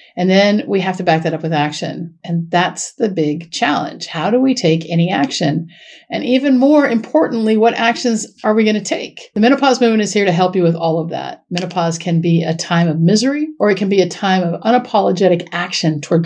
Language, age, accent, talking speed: English, 50-69, American, 225 wpm